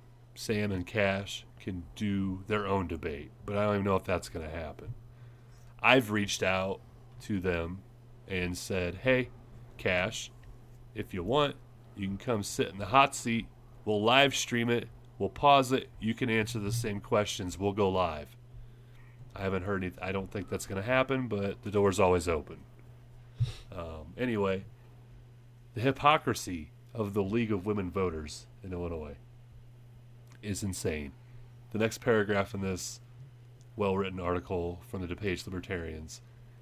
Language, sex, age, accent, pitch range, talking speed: English, male, 30-49, American, 100-120 Hz, 155 wpm